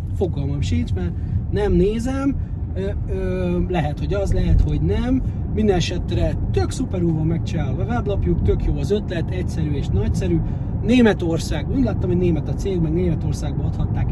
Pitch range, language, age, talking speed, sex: 85-110 Hz, Hungarian, 30-49, 155 wpm, male